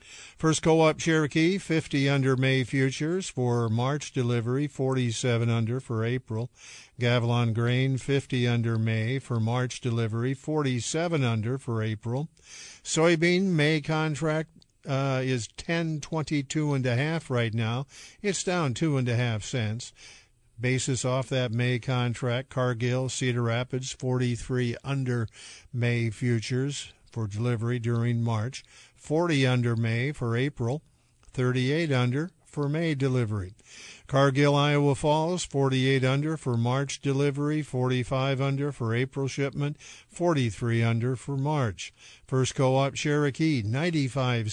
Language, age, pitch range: English, 50-69, 120-145 Hz